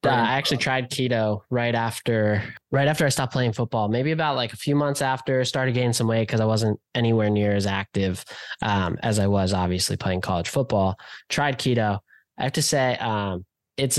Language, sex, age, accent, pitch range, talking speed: English, male, 10-29, American, 105-135 Hz, 200 wpm